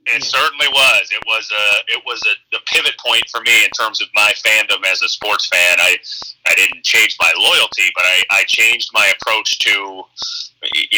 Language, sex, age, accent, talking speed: English, male, 30-49, American, 200 wpm